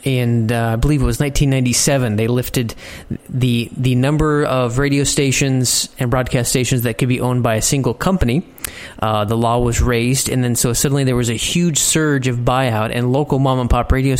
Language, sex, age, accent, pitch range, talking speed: English, male, 30-49, American, 120-145 Hz, 205 wpm